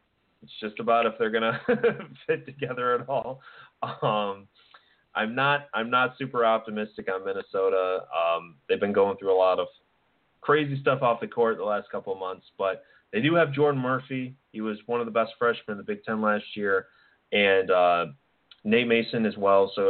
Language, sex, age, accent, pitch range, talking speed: English, male, 20-39, American, 100-140 Hz, 195 wpm